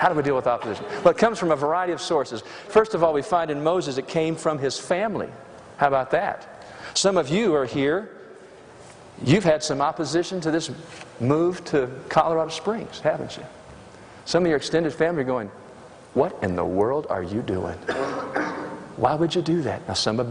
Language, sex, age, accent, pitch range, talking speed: English, male, 50-69, American, 120-165 Hz, 200 wpm